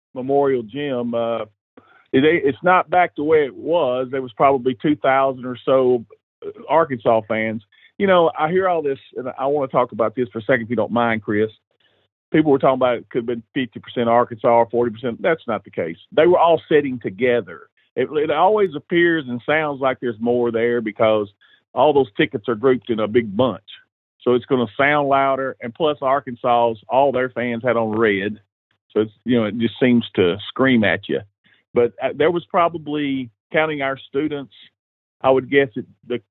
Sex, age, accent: male, 40-59, American